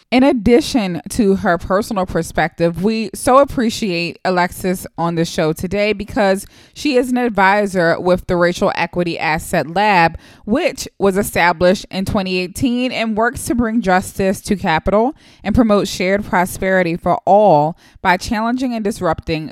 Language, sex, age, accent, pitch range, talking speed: English, female, 20-39, American, 170-215 Hz, 145 wpm